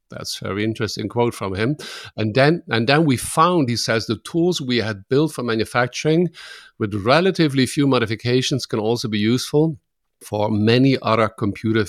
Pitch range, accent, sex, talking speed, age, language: 110-140 Hz, German, male, 170 wpm, 50-69, English